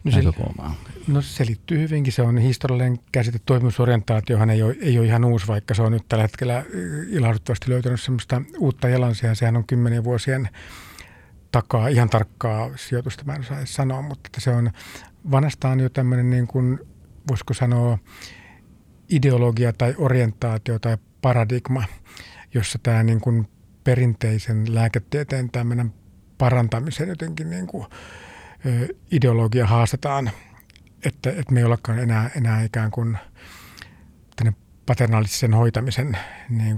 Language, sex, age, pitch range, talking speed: Finnish, male, 50-69, 110-130 Hz, 125 wpm